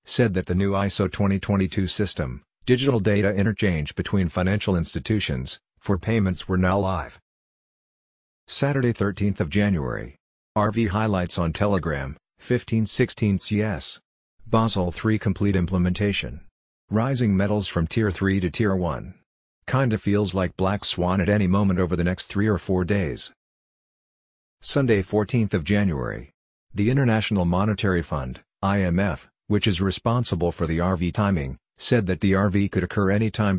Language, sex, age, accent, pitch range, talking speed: English, male, 50-69, American, 90-105 Hz, 140 wpm